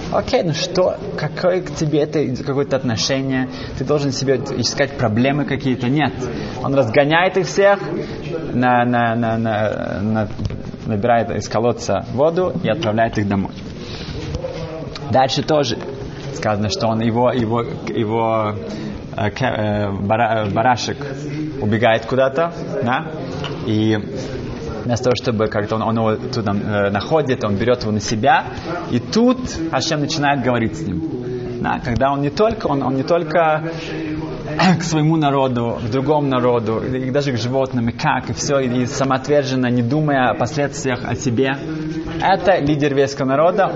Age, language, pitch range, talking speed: 20-39, Russian, 115-155 Hz, 135 wpm